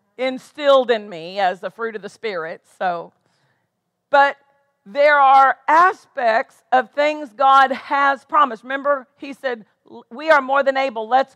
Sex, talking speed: female, 150 wpm